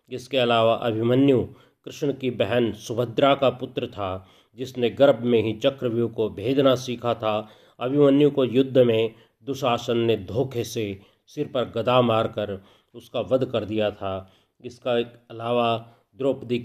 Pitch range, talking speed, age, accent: 110-130 Hz, 140 wpm, 40-59, native